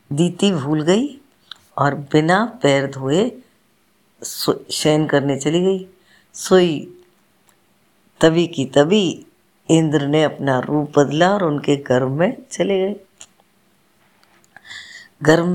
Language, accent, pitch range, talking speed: Hindi, native, 145-180 Hz, 105 wpm